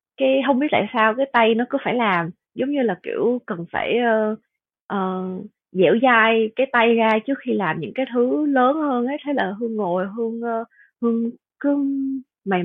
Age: 20-39